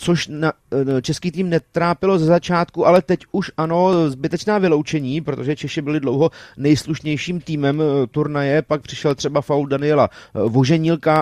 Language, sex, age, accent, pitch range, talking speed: Czech, male, 30-49, native, 140-165 Hz, 140 wpm